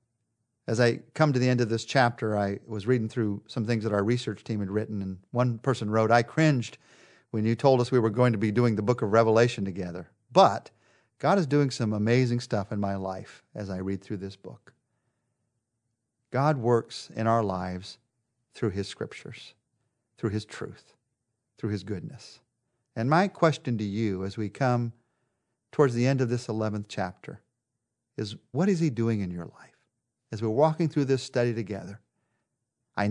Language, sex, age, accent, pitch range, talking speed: English, male, 40-59, American, 110-130 Hz, 185 wpm